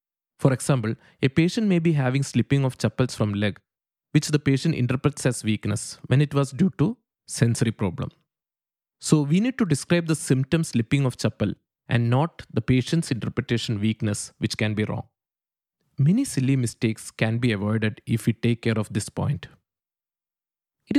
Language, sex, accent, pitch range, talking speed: English, male, Indian, 115-145 Hz, 170 wpm